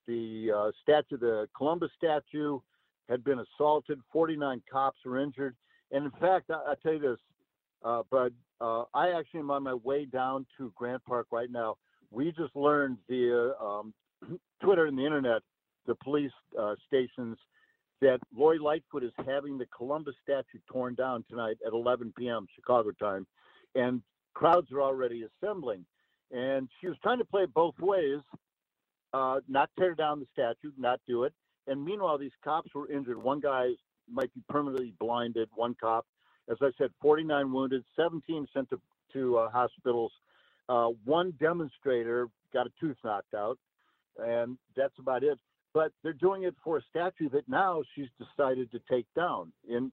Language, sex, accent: English, male, American